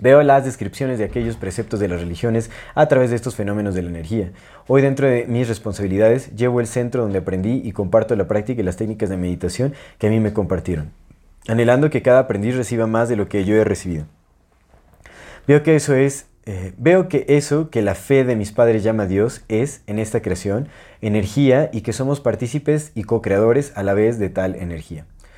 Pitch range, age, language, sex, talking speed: 100-130 Hz, 30-49, Spanish, male, 205 wpm